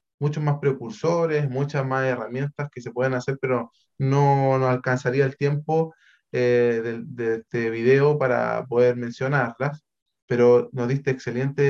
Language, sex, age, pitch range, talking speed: Spanish, male, 20-39, 130-150 Hz, 145 wpm